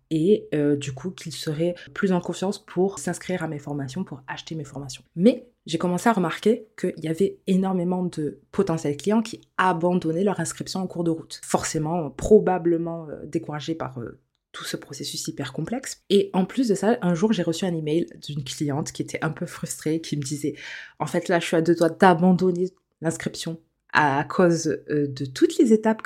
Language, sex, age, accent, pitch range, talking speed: French, female, 20-39, French, 155-190 Hz, 205 wpm